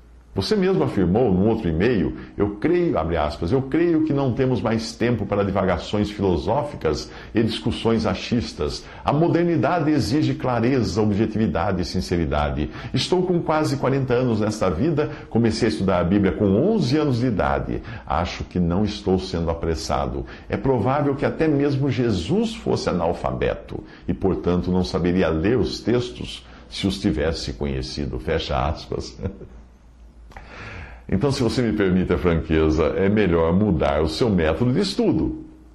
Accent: Brazilian